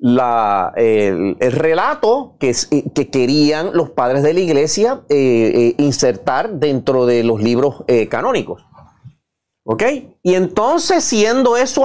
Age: 30-49